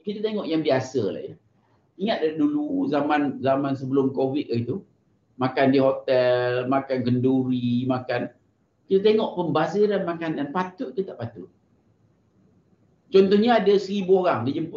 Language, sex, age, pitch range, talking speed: Malay, male, 50-69, 135-215 Hz, 135 wpm